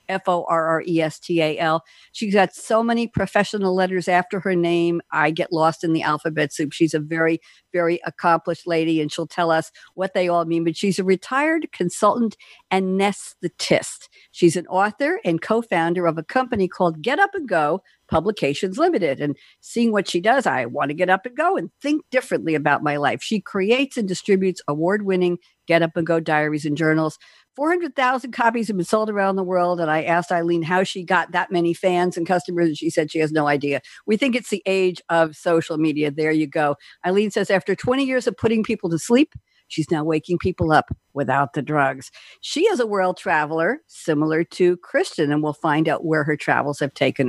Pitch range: 160-210 Hz